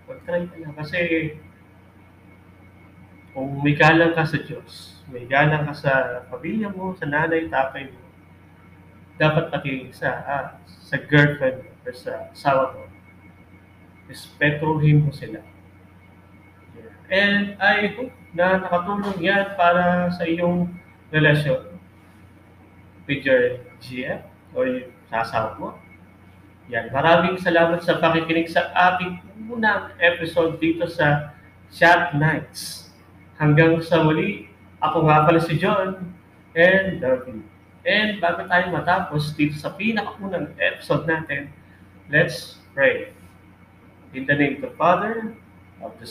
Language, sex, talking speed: Filipino, male, 120 wpm